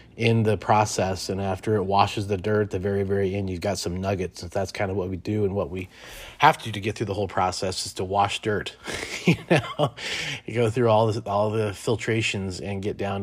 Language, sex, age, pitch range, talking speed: English, male, 30-49, 95-110 Hz, 235 wpm